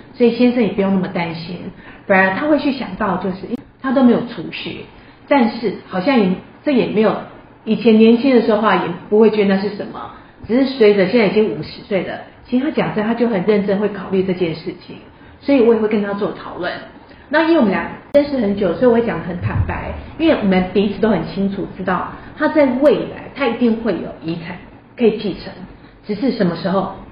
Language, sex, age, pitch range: Chinese, female, 30-49, 190-245 Hz